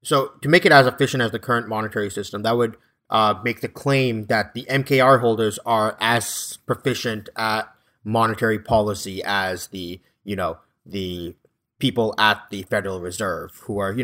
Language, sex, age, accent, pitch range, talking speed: English, male, 30-49, American, 105-135 Hz, 170 wpm